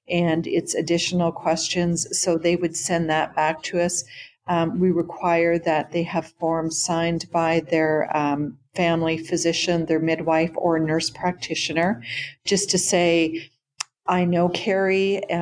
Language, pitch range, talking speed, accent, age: English, 160-175 Hz, 140 wpm, American, 40-59